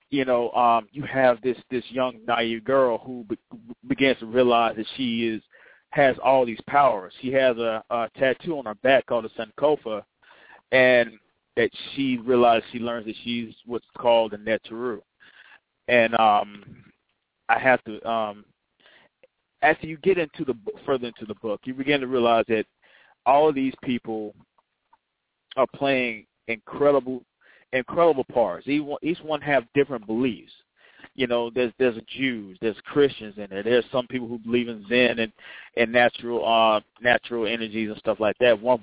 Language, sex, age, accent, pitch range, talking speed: English, male, 30-49, American, 115-130 Hz, 165 wpm